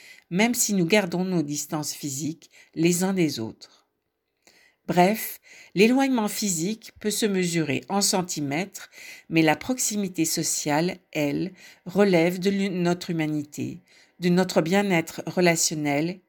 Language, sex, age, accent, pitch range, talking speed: French, female, 50-69, French, 155-200 Hz, 120 wpm